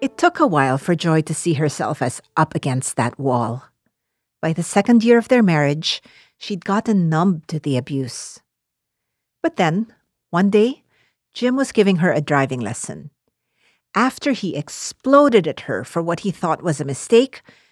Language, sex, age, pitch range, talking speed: English, female, 50-69, 150-205 Hz, 170 wpm